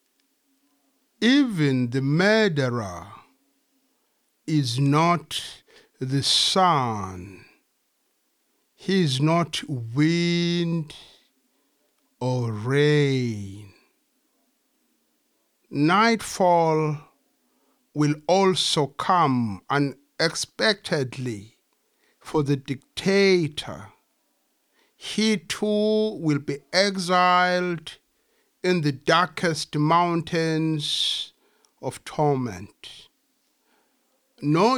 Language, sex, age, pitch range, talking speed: English, male, 60-79, 140-190 Hz, 55 wpm